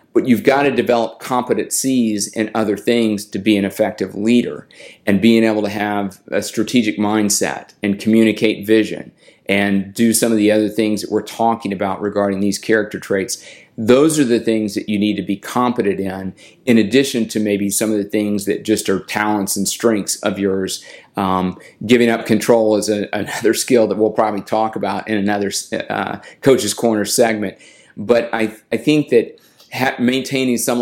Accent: American